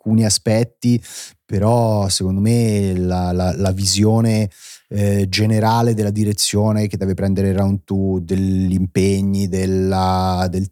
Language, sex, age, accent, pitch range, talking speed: Italian, male, 30-49, native, 90-105 Hz, 120 wpm